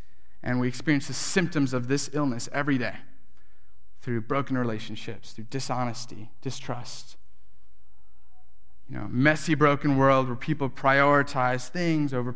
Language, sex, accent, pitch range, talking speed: English, male, American, 135-180 Hz, 125 wpm